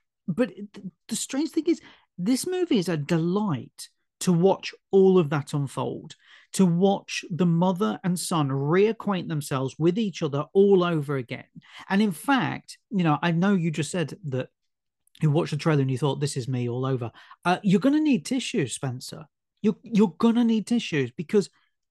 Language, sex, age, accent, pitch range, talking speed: English, male, 40-59, British, 160-220 Hz, 180 wpm